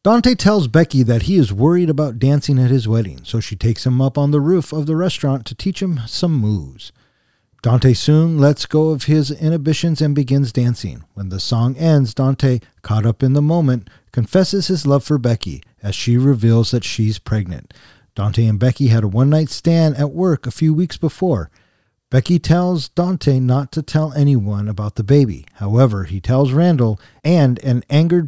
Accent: American